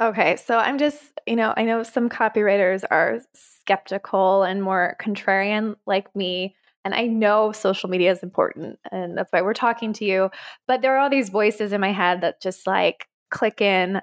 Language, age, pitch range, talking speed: English, 20-39, 190-235 Hz, 195 wpm